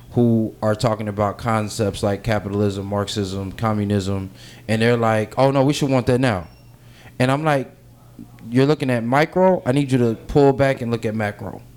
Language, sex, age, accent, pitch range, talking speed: English, male, 20-39, American, 115-135 Hz, 185 wpm